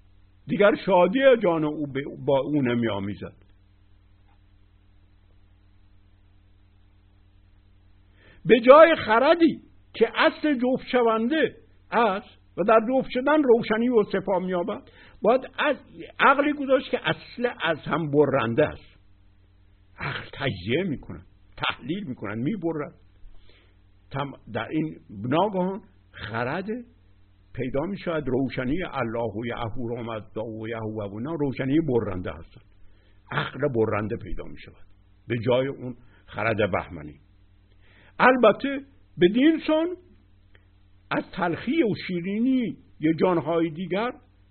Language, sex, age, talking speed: Persian, male, 60-79, 110 wpm